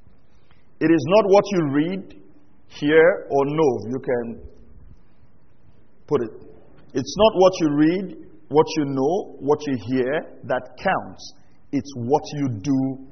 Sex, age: male, 50-69